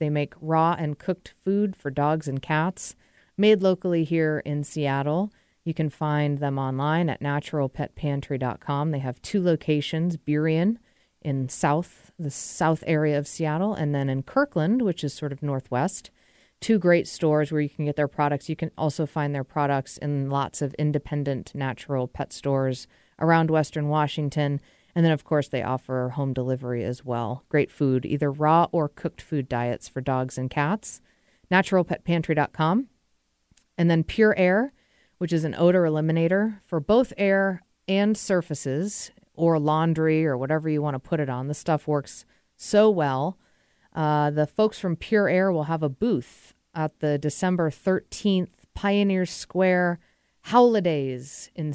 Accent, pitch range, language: American, 145-175 Hz, English